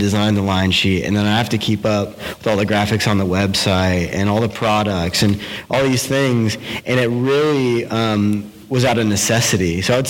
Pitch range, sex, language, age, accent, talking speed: 105-125 Hz, male, English, 30-49, American, 215 wpm